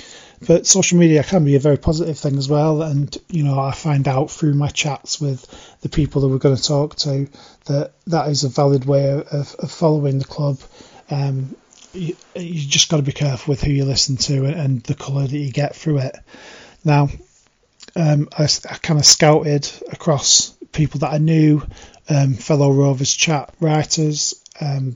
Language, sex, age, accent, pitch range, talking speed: English, male, 30-49, British, 140-155 Hz, 190 wpm